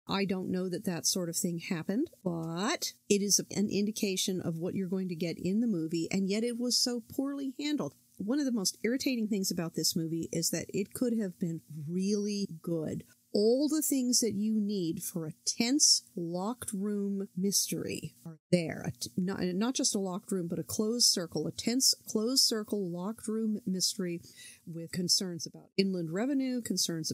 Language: English